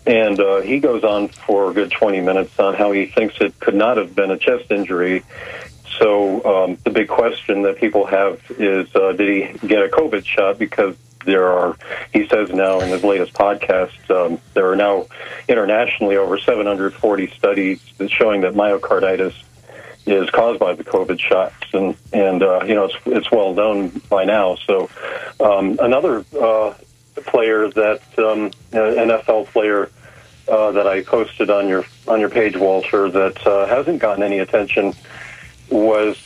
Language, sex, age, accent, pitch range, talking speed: English, male, 40-59, American, 95-105 Hz, 165 wpm